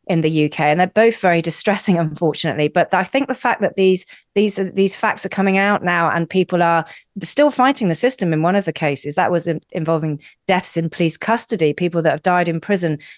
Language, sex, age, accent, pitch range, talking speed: English, female, 40-59, British, 160-190 Hz, 225 wpm